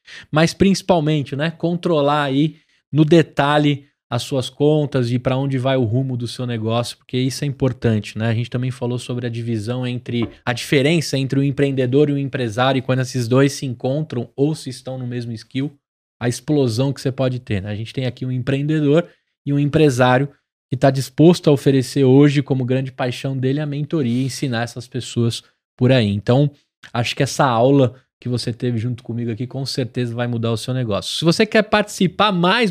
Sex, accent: male, Brazilian